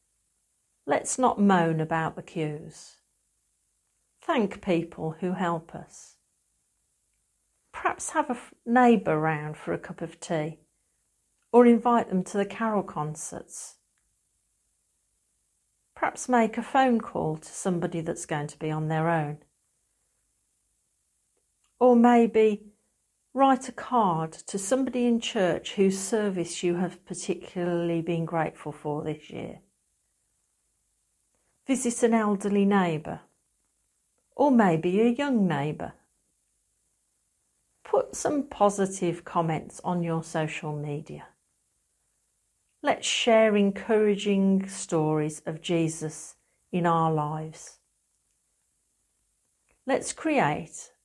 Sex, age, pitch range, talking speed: female, 50-69, 150-210 Hz, 105 wpm